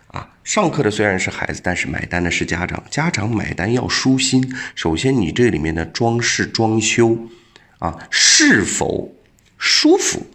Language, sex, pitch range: Chinese, male, 85-130 Hz